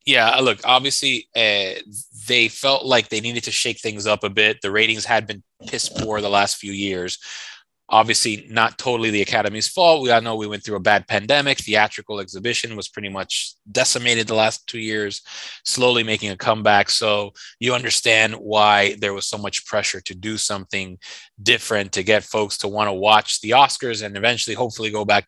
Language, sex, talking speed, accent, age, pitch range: English, male, 190 wpm, American, 20-39, 100-115 Hz